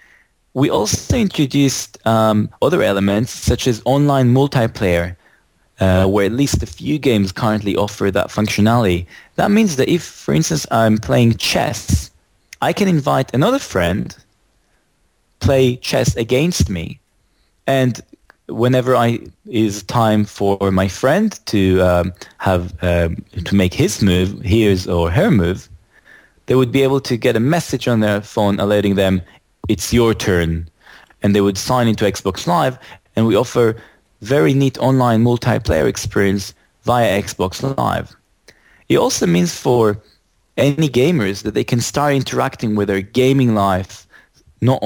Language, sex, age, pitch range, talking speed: English, male, 20-39, 95-125 Hz, 145 wpm